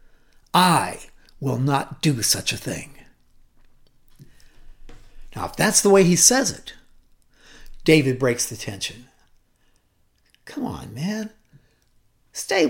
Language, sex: English, male